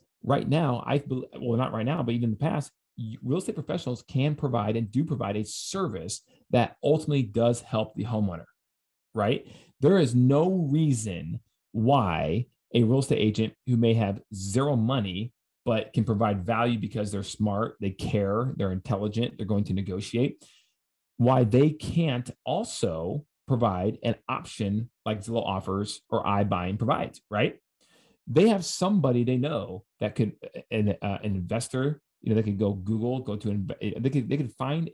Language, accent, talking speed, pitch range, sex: English, American, 165 wpm, 105-130 Hz, male